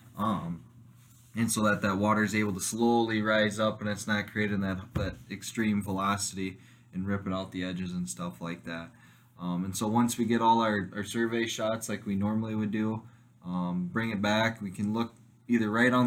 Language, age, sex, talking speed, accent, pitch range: English, 20-39, male, 205 wpm, American, 95-110 Hz